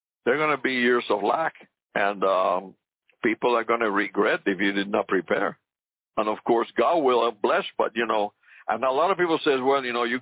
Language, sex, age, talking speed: English, male, 60-79, 235 wpm